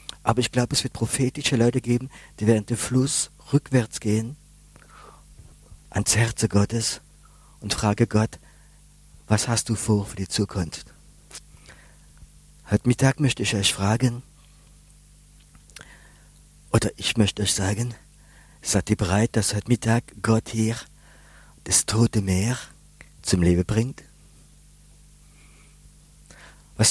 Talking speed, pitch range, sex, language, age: 120 wpm, 105-130 Hz, male, German, 50-69